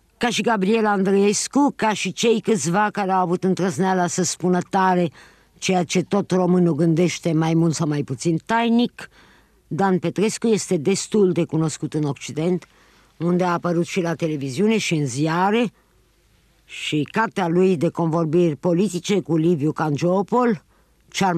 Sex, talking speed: female, 150 wpm